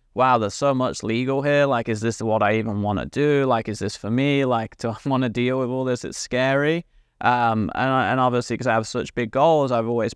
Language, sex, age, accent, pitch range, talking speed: English, male, 20-39, British, 110-130 Hz, 255 wpm